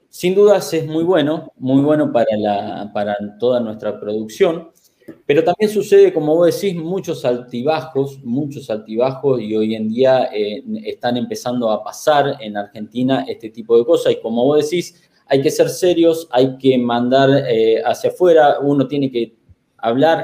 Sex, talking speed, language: male, 165 wpm, Spanish